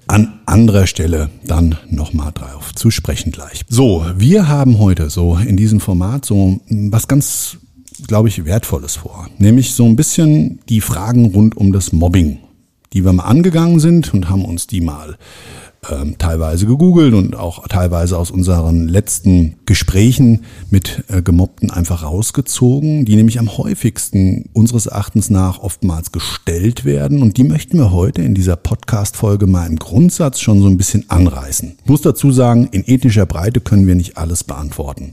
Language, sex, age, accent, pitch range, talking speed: German, male, 50-69, German, 90-115 Hz, 160 wpm